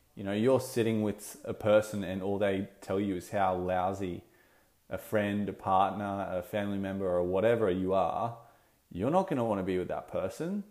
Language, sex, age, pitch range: English, male, 20-39, 95-115 Hz